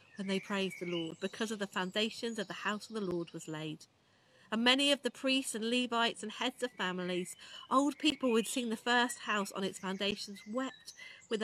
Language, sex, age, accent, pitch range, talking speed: English, female, 40-59, British, 185-250 Hz, 210 wpm